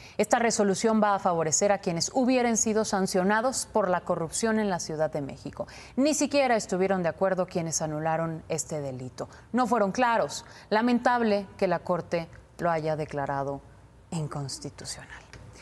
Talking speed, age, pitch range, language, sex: 145 wpm, 30-49, 155-200 Hz, Spanish, female